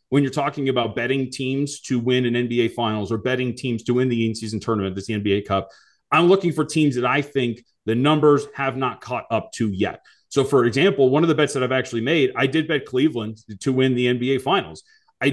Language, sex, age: English, male, 30-49